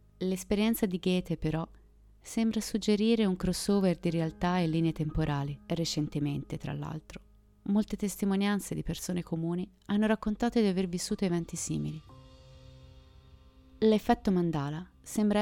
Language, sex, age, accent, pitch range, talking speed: Italian, female, 30-49, native, 155-195 Hz, 120 wpm